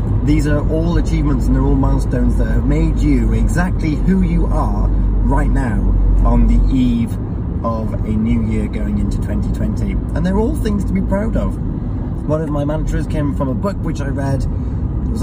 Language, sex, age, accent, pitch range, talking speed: English, male, 30-49, British, 100-125 Hz, 190 wpm